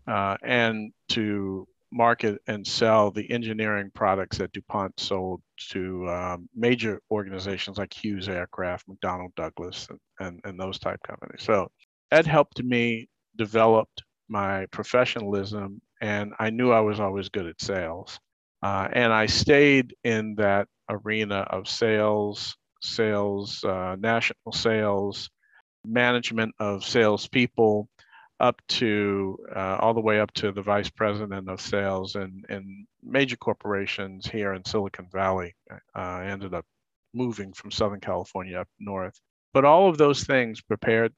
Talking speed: 140 wpm